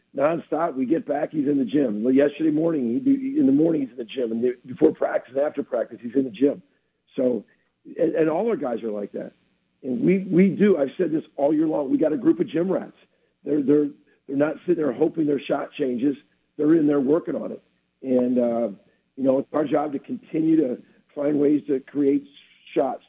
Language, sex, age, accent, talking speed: English, male, 50-69, American, 225 wpm